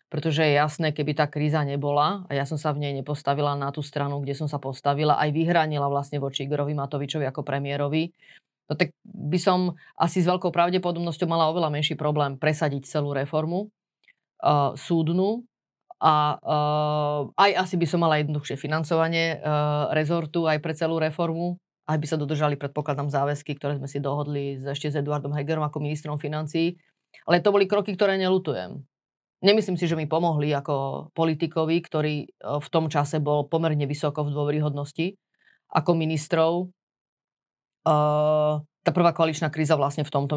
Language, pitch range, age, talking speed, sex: Slovak, 145-165 Hz, 30-49, 165 wpm, female